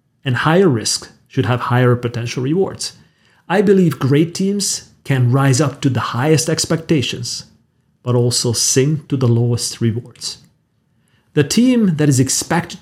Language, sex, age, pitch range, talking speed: English, male, 40-59, 120-155 Hz, 145 wpm